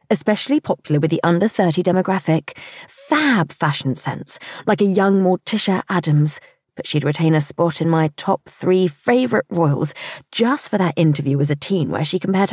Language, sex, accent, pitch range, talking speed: English, female, British, 160-200 Hz, 170 wpm